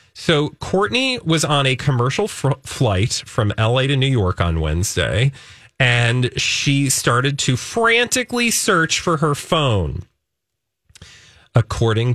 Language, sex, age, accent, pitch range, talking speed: English, male, 30-49, American, 105-145 Hz, 120 wpm